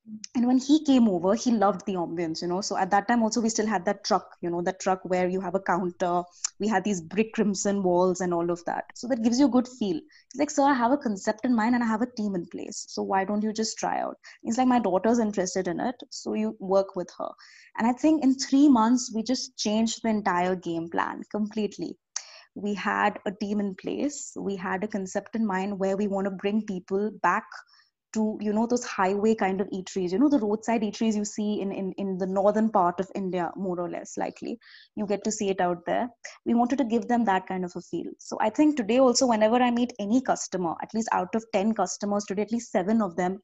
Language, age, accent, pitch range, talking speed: English, 20-39, Indian, 190-240 Hz, 250 wpm